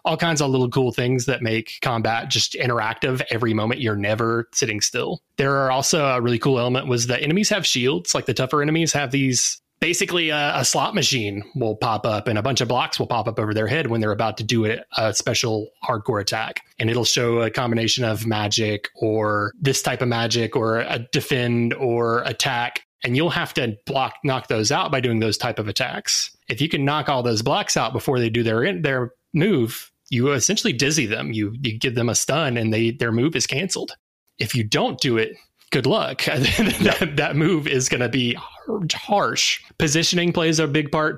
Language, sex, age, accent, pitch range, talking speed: English, male, 20-39, American, 115-140 Hz, 210 wpm